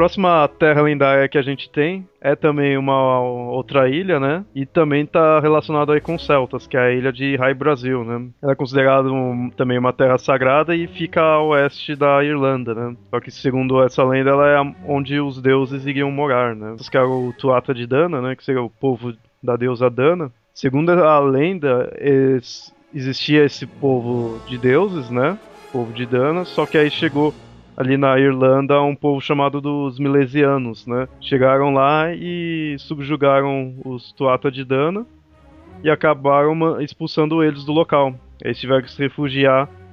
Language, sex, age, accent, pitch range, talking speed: Portuguese, male, 20-39, Brazilian, 125-150 Hz, 175 wpm